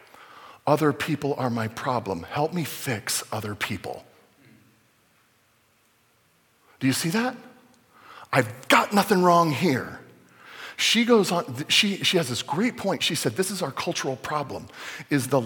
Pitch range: 125-190 Hz